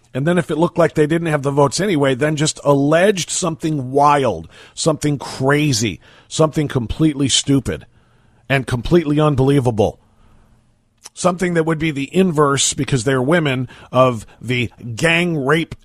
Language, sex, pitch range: English, male, 120-165 Hz